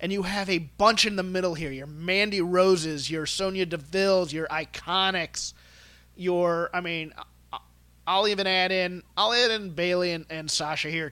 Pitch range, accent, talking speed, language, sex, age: 140-190 Hz, American, 175 wpm, English, male, 30-49